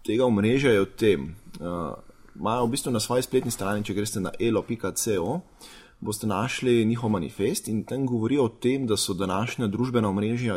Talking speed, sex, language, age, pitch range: 180 wpm, male, English, 20-39, 95-115 Hz